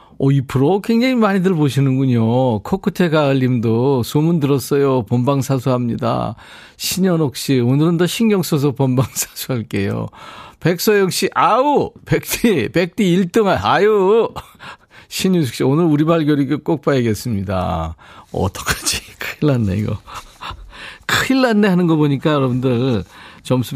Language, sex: Korean, male